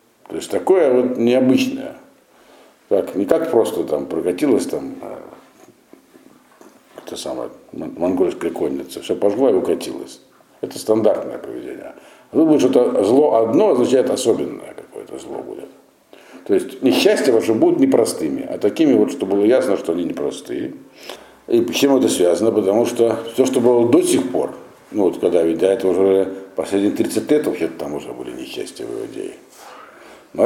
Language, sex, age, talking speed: Russian, male, 60-79, 150 wpm